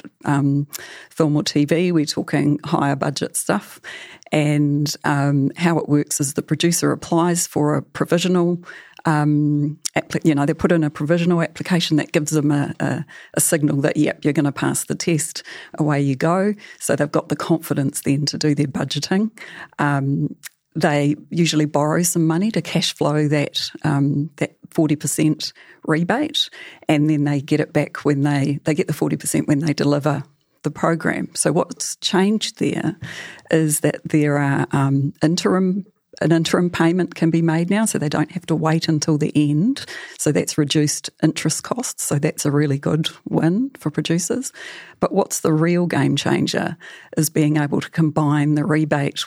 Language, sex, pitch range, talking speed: English, female, 145-165 Hz, 175 wpm